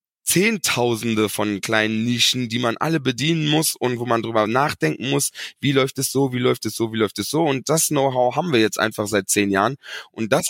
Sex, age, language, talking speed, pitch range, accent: male, 20-39, German, 225 wpm, 115-145 Hz, German